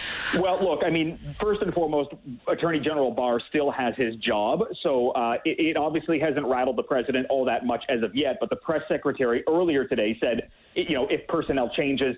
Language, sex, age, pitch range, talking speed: English, male, 40-59, 130-160 Hz, 200 wpm